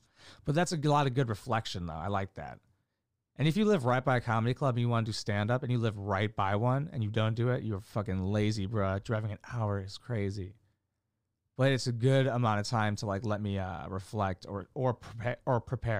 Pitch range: 105-130 Hz